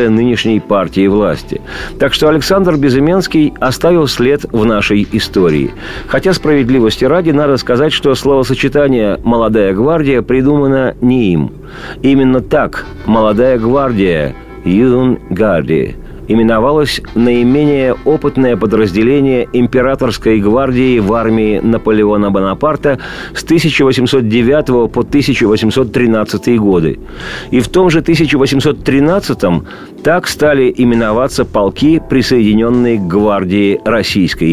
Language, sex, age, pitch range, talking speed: Russian, male, 50-69, 110-140 Hz, 100 wpm